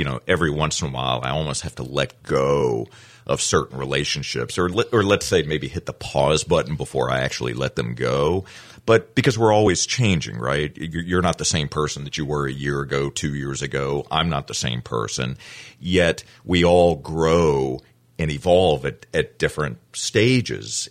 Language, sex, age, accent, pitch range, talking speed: English, male, 40-59, American, 70-100 Hz, 190 wpm